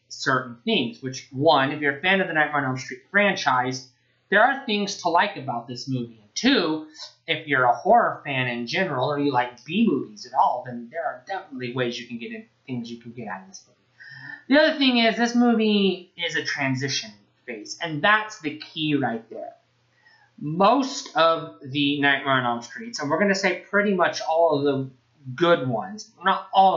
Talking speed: 210 wpm